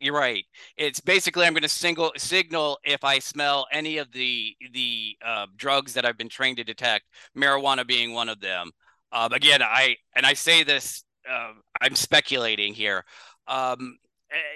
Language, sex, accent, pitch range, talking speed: English, male, American, 115-145 Hz, 175 wpm